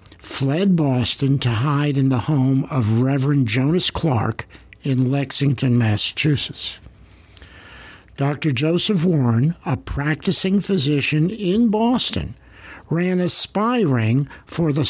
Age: 60-79